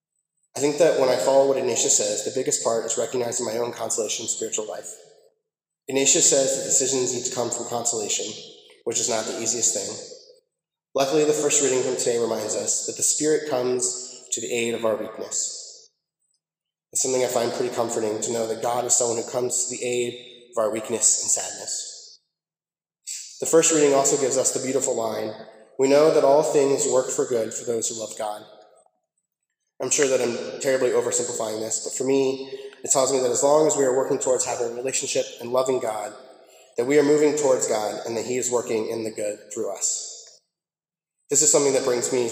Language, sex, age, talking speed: English, male, 20-39, 205 wpm